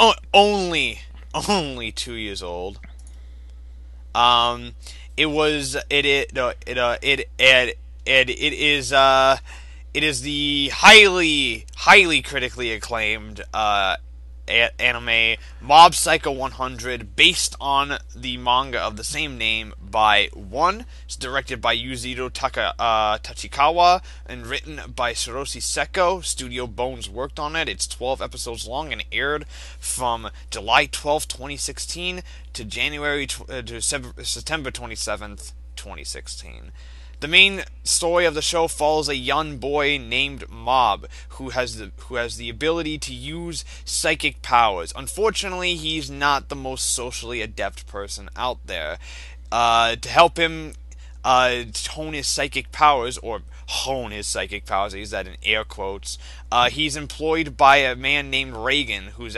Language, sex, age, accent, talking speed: English, male, 20-39, American, 140 wpm